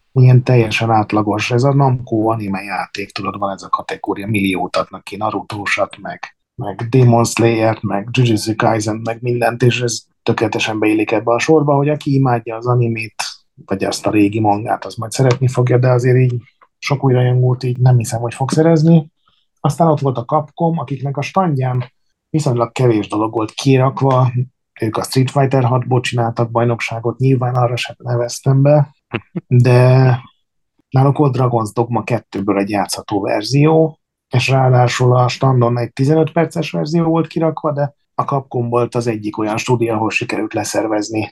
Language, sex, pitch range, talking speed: Hungarian, male, 115-140 Hz, 165 wpm